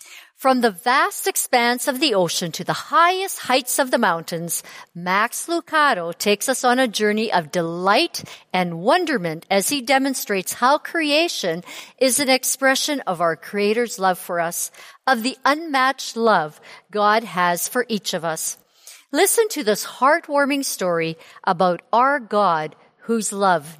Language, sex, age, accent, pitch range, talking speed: English, female, 50-69, American, 175-275 Hz, 150 wpm